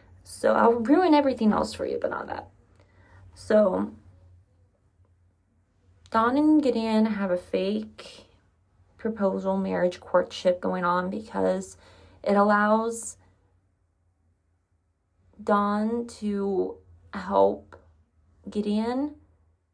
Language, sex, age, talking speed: English, female, 20-39, 90 wpm